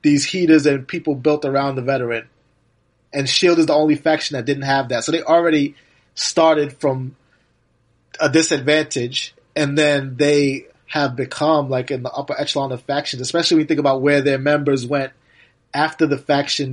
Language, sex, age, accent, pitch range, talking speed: English, male, 30-49, American, 130-155 Hz, 175 wpm